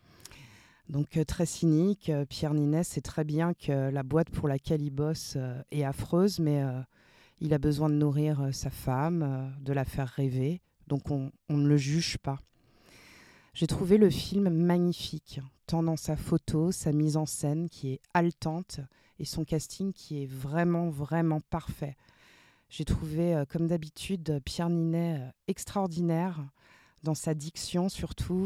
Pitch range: 150-185 Hz